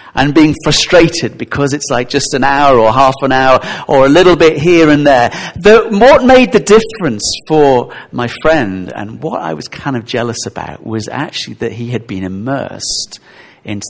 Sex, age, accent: male, 50-69, British